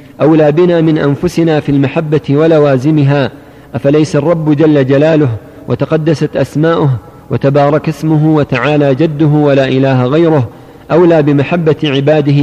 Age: 40-59